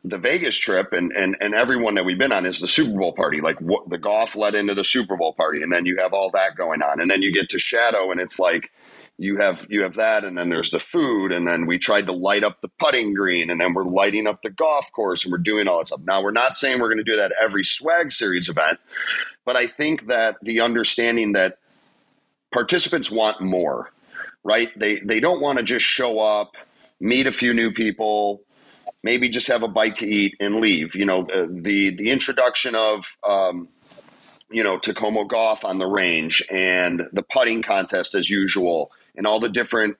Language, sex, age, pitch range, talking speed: English, male, 40-59, 95-110 Hz, 220 wpm